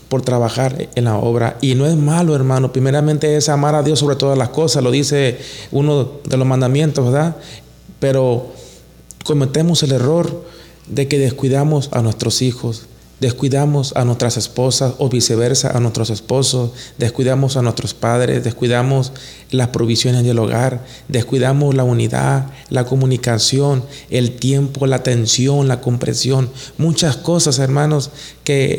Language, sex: Spanish, male